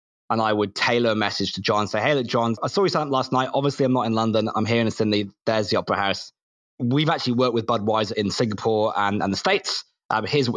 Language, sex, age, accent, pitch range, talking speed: English, male, 20-39, British, 105-130 Hz, 255 wpm